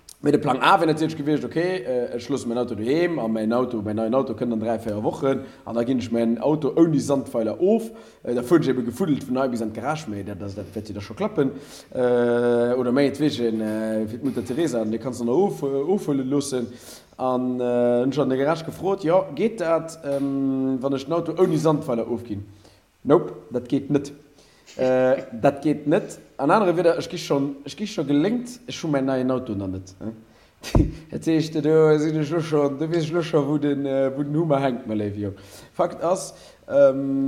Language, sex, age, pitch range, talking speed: English, male, 30-49, 120-160 Hz, 170 wpm